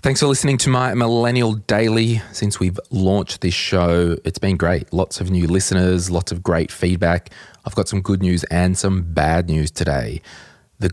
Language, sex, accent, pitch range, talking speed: English, male, Australian, 85-105 Hz, 185 wpm